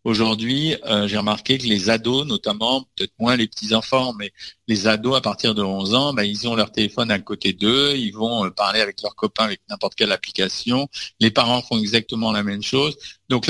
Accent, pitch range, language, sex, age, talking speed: French, 110-140 Hz, French, male, 50-69, 210 wpm